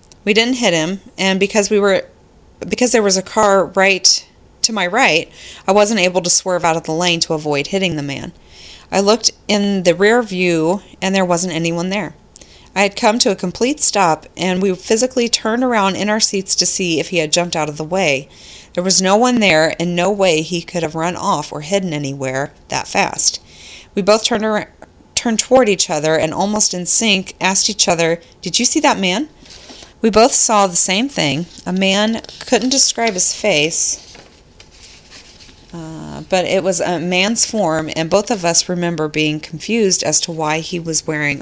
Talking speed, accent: 200 wpm, American